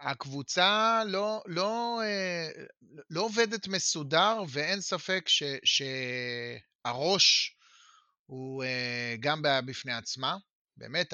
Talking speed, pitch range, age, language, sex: 80 wpm, 135-205 Hz, 30-49, Hebrew, male